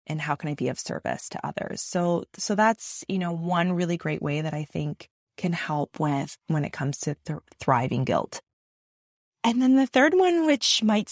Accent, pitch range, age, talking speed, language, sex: American, 155-210 Hz, 20-39, 205 wpm, English, female